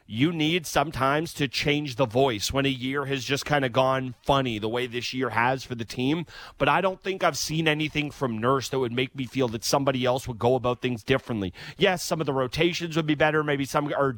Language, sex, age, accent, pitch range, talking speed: English, male, 30-49, American, 125-145 Hz, 240 wpm